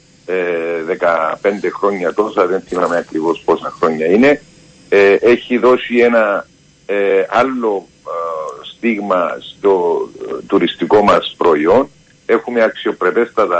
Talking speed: 90 wpm